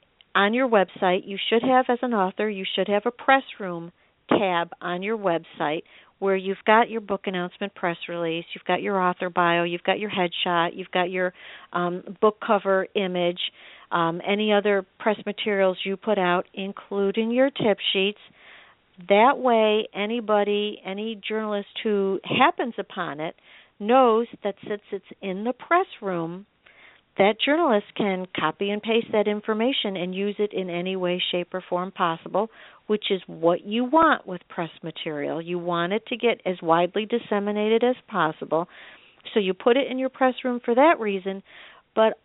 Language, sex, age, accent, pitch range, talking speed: English, female, 50-69, American, 185-220 Hz, 170 wpm